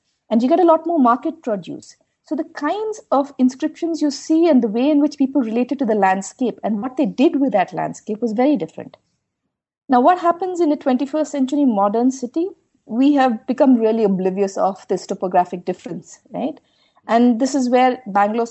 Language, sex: English, female